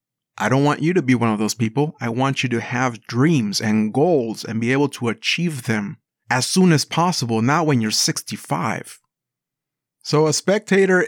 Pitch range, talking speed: 115-145 Hz, 190 wpm